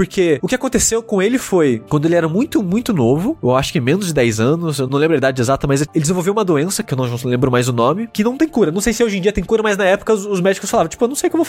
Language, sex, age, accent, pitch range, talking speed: Portuguese, male, 20-39, Brazilian, 140-215 Hz, 340 wpm